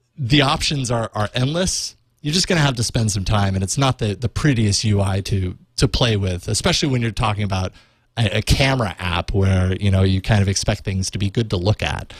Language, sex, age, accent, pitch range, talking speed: English, male, 30-49, American, 105-130 Hz, 235 wpm